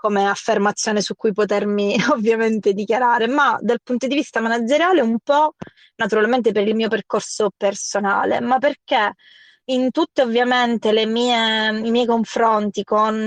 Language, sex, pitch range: Italian, female, 205-230 Hz